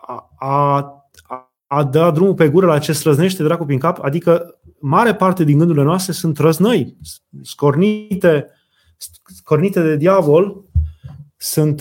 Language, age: Romanian, 20-39